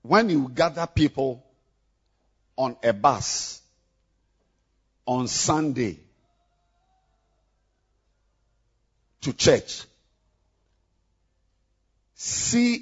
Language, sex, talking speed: English, male, 55 wpm